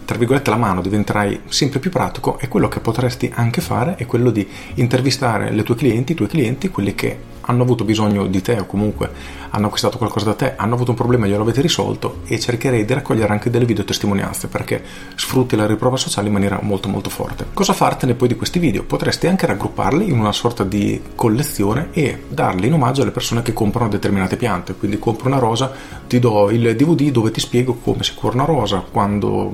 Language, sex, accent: Italian, male, native